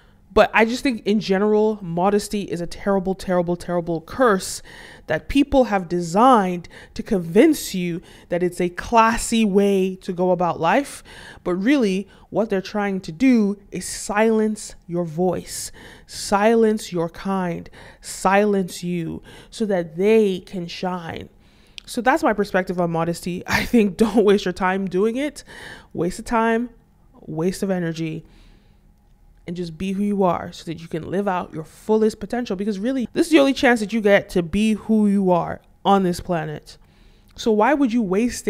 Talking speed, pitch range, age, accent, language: 170 wpm, 180-225 Hz, 20-39, American, English